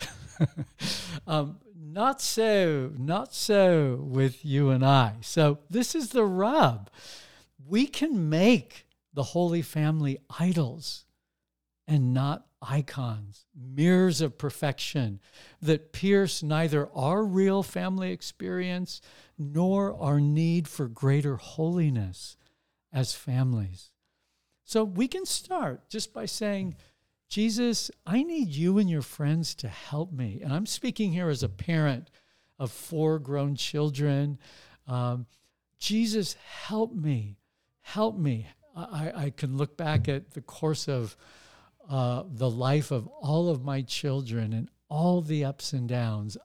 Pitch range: 130-175 Hz